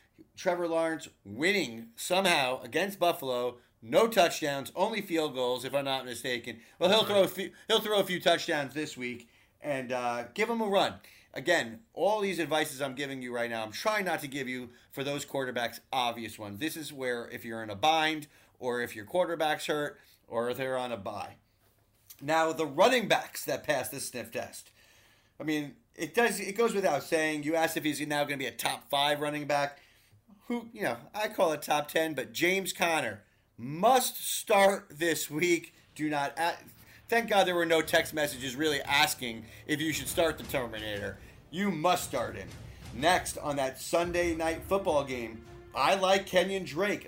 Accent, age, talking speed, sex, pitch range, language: American, 30-49, 185 wpm, male, 125-170 Hz, English